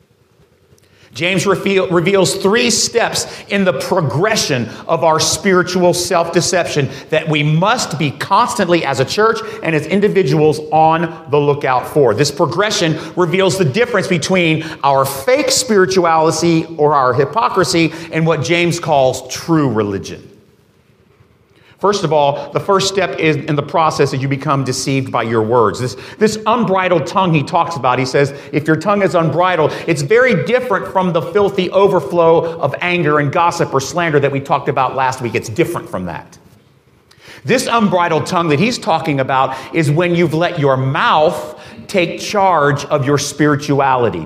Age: 40-59